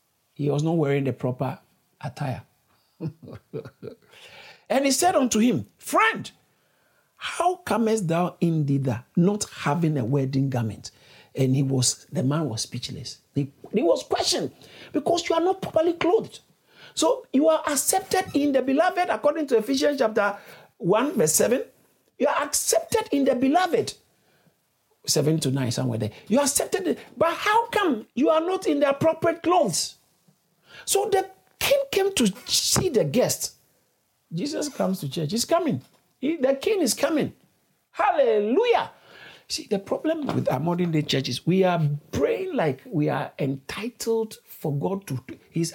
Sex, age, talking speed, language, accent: male, 50-69, 155 wpm, English, Nigerian